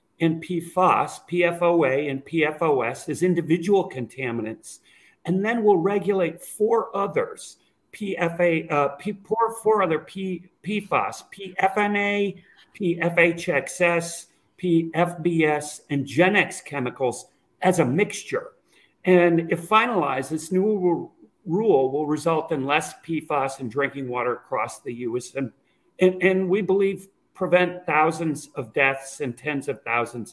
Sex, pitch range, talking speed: male, 150-190 Hz, 120 wpm